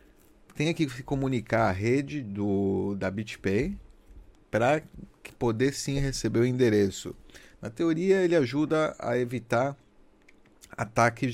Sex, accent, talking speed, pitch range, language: male, Brazilian, 110 wpm, 105-135 Hz, Portuguese